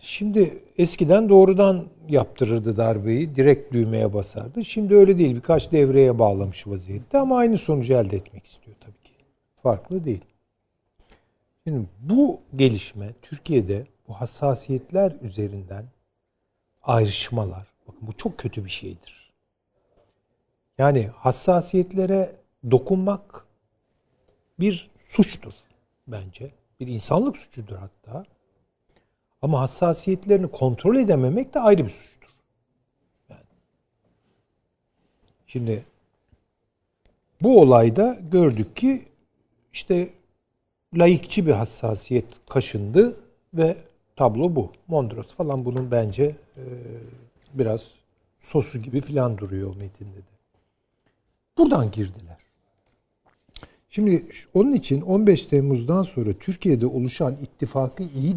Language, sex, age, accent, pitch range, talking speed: Turkish, male, 60-79, native, 105-165 Hz, 95 wpm